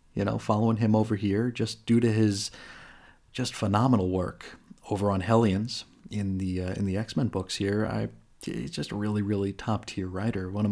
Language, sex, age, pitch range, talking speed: English, male, 30-49, 100-120 Hz, 190 wpm